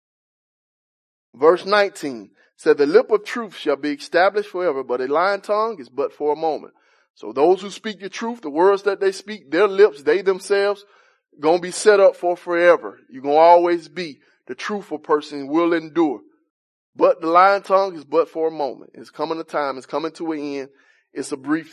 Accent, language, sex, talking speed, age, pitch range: American, English, male, 200 wpm, 20-39, 150-215 Hz